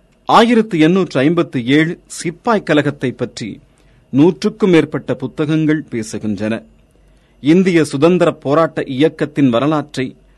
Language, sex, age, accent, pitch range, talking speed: Tamil, male, 40-59, native, 130-165 Hz, 80 wpm